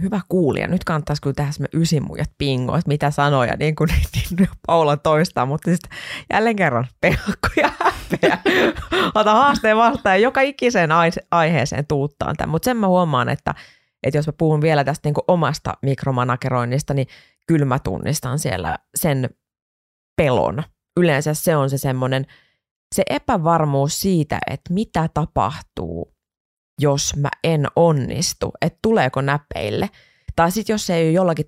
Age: 20-39